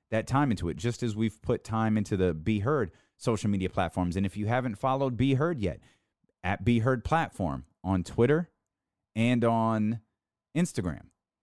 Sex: male